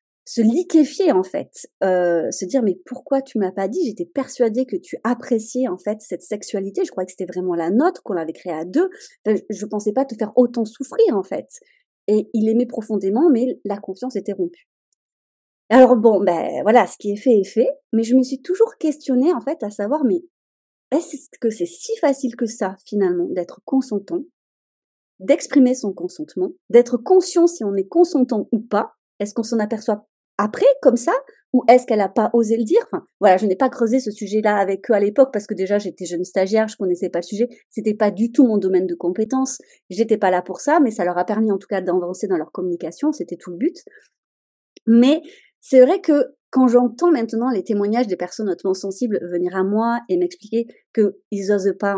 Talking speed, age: 210 wpm, 30-49